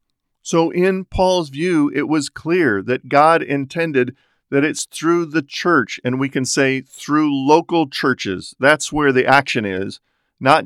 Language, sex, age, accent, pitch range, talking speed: English, male, 40-59, American, 125-155 Hz, 160 wpm